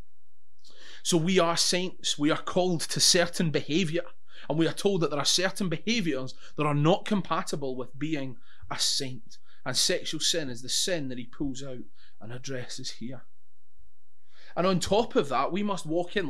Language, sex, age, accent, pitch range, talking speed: English, male, 20-39, British, 130-170 Hz, 180 wpm